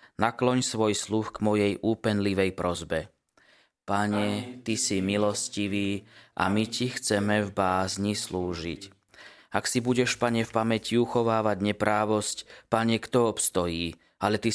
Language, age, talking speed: Slovak, 20-39, 130 wpm